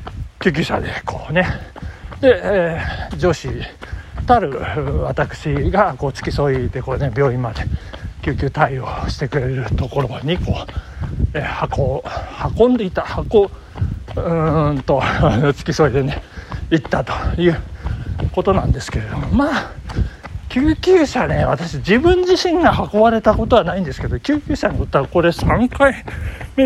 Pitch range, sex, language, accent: 130-215 Hz, male, Japanese, native